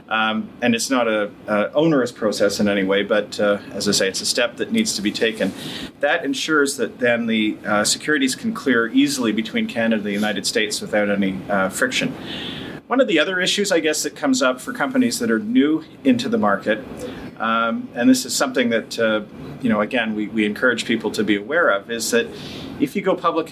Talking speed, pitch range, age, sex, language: 215 wpm, 110-145 Hz, 40-59, male, English